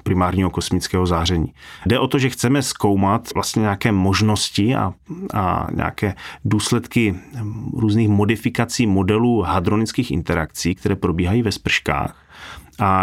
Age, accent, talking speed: 30-49, native, 120 wpm